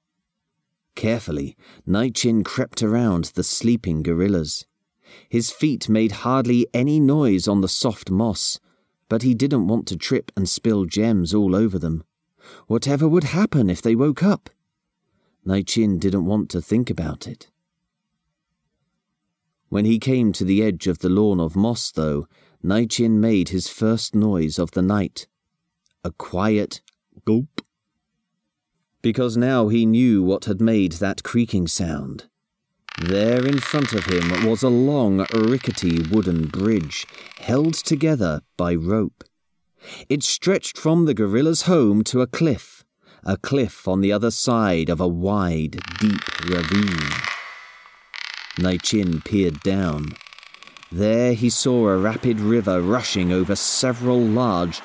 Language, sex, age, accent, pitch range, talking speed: English, male, 40-59, British, 95-120 Hz, 140 wpm